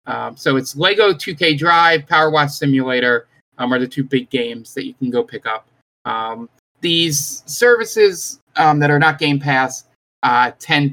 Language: English